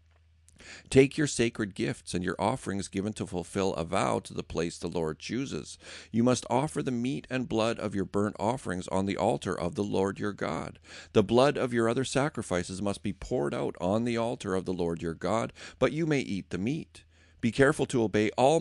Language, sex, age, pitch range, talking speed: English, male, 50-69, 85-125 Hz, 215 wpm